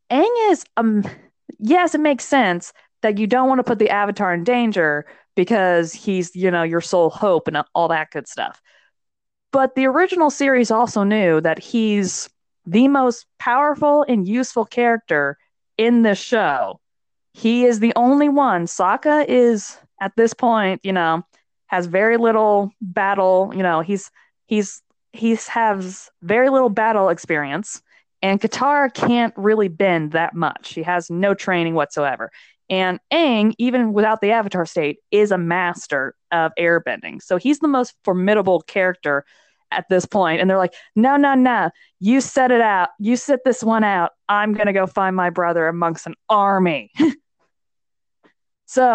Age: 20-39